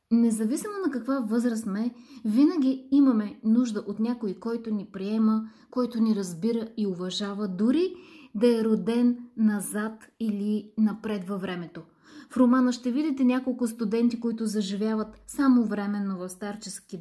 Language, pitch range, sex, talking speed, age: Bulgarian, 205-245 Hz, female, 140 wpm, 20-39